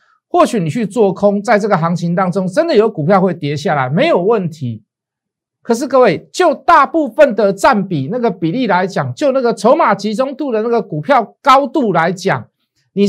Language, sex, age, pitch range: Chinese, male, 50-69, 165-240 Hz